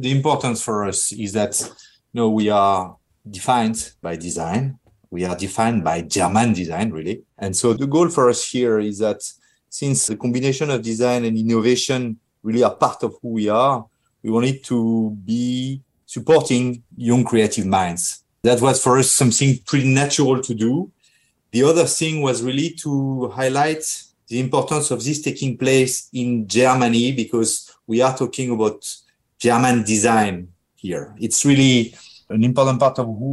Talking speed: 160 wpm